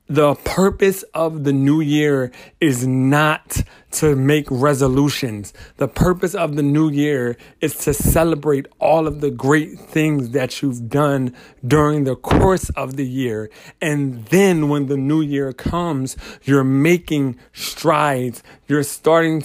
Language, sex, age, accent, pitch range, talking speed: English, male, 40-59, American, 130-155 Hz, 140 wpm